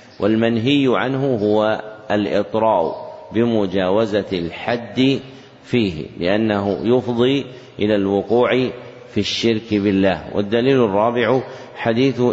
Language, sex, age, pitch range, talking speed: Arabic, male, 50-69, 100-120 Hz, 85 wpm